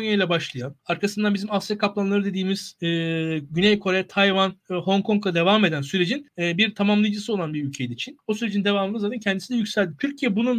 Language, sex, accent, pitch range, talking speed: Turkish, male, native, 185-250 Hz, 185 wpm